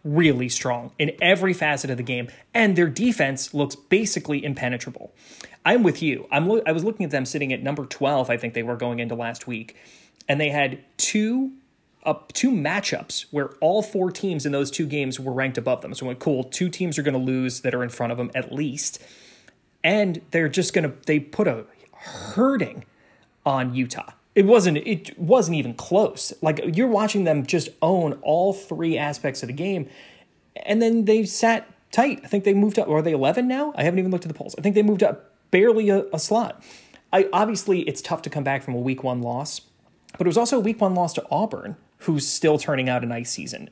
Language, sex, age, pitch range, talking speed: English, male, 30-49, 135-195 Hz, 215 wpm